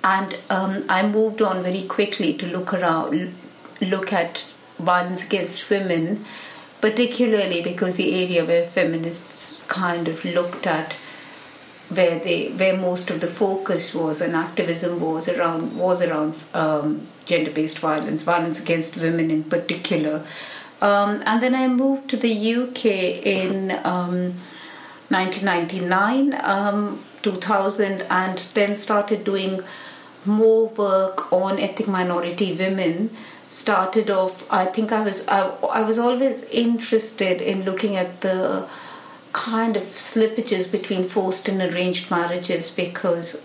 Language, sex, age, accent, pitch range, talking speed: English, female, 50-69, Indian, 175-210 Hz, 135 wpm